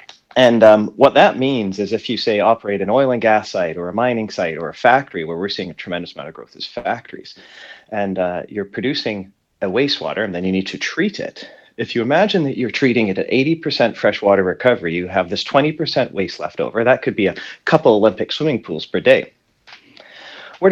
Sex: male